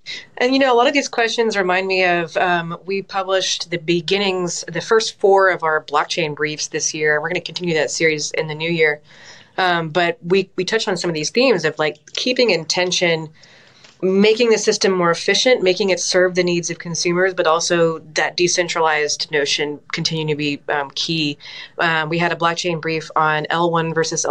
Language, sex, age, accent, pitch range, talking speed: English, female, 30-49, American, 155-180 Hz, 195 wpm